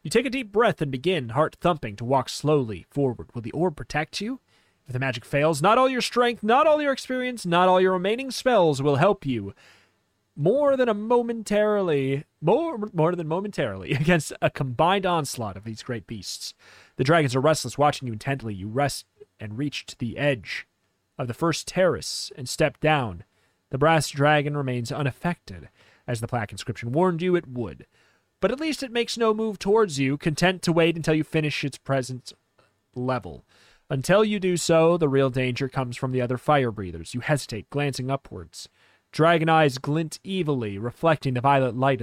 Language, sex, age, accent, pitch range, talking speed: English, male, 30-49, American, 120-170 Hz, 185 wpm